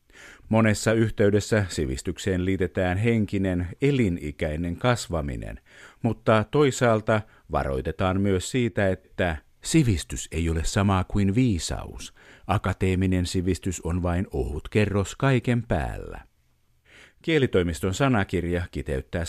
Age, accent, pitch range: 50-69, native, 85-115 Hz